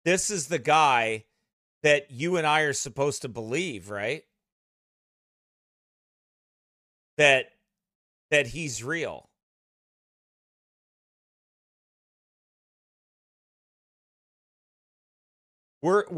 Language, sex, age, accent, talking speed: English, male, 40-59, American, 65 wpm